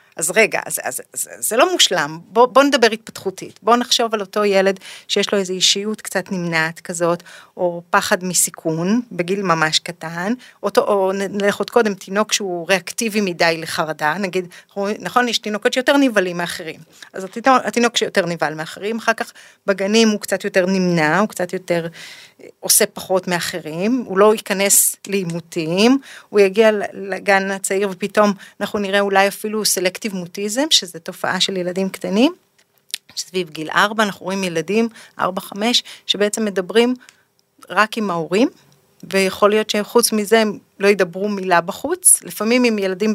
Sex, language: female, Hebrew